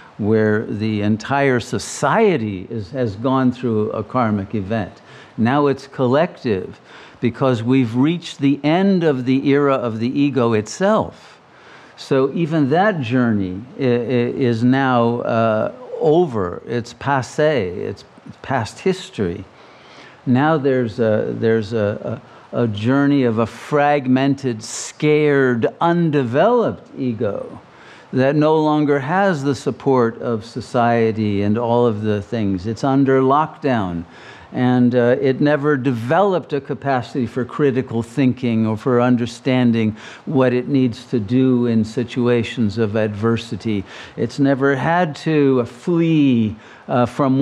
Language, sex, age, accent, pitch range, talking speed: English, male, 50-69, American, 115-140 Hz, 120 wpm